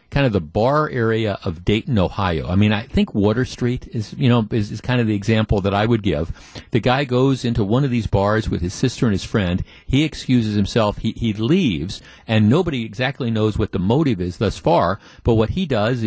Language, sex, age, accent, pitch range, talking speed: English, male, 50-69, American, 105-130 Hz, 230 wpm